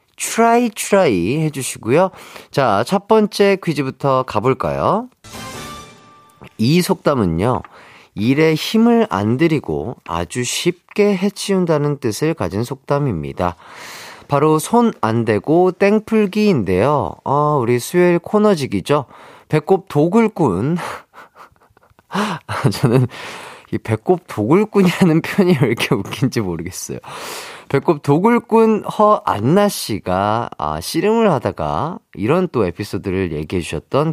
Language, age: Korean, 40-59